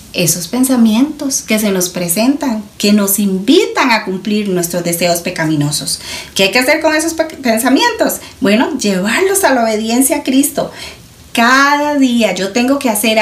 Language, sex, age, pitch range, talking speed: Spanish, female, 40-59, 180-290 Hz, 155 wpm